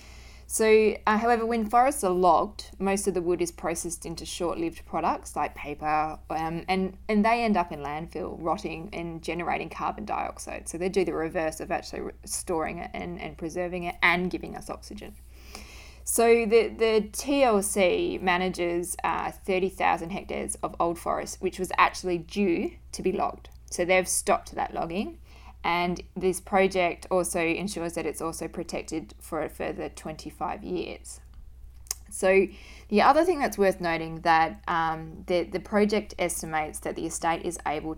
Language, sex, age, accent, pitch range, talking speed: English, female, 20-39, Australian, 160-190 Hz, 160 wpm